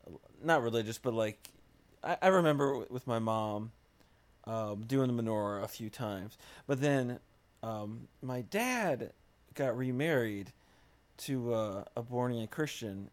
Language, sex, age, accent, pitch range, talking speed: English, male, 40-59, American, 110-135 Hz, 135 wpm